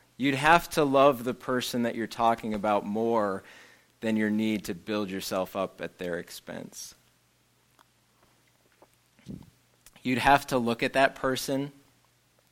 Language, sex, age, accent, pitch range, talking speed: English, male, 30-49, American, 100-125 Hz, 135 wpm